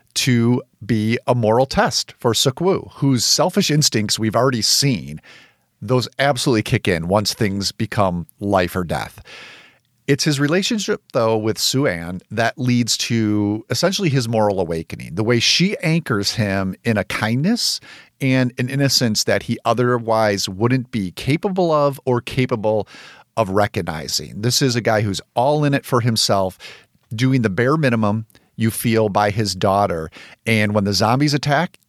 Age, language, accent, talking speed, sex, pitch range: 40-59, English, American, 155 wpm, male, 100-130 Hz